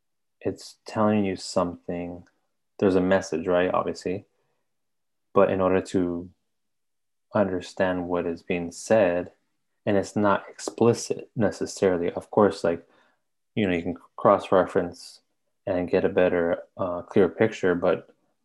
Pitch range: 85-95 Hz